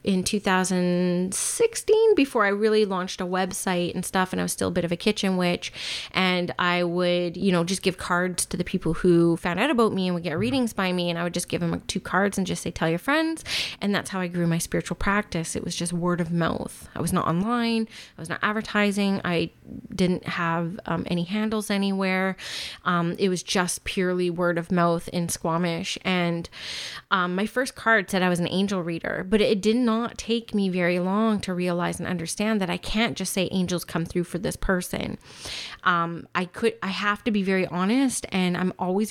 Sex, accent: female, American